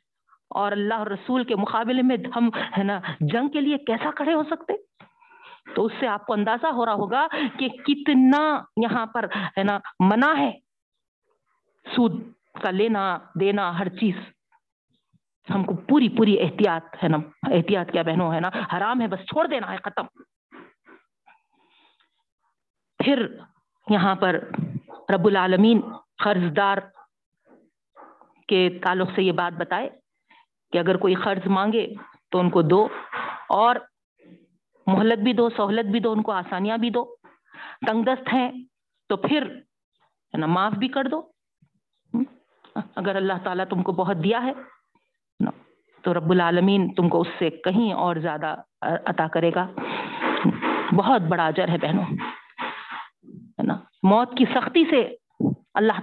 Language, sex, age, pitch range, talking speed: Urdu, female, 50-69, 190-260 Hz, 145 wpm